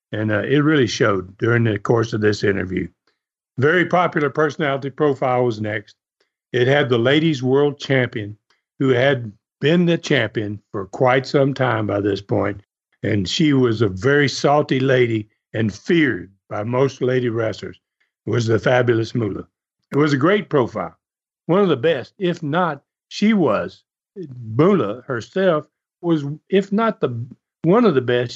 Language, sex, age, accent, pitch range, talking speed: English, male, 60-79, American, 115-170 Hz, 160 wpm